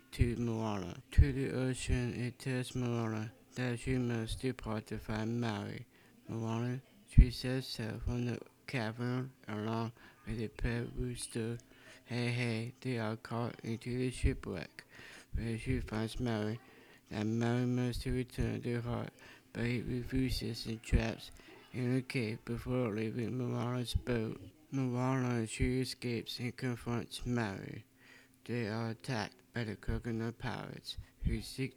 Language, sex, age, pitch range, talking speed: English, male, 60-79, 110-125 Hz, 140 wpm